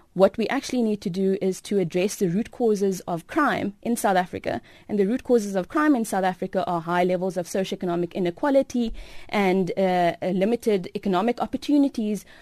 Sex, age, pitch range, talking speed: female, 20-39, 195-235 Hz, 180 wpm